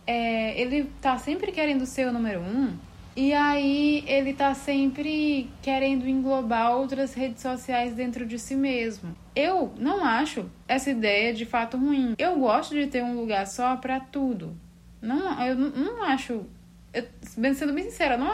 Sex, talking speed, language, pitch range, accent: female, 160 wpm, Portuguese, 220-275 Hz, Brazilian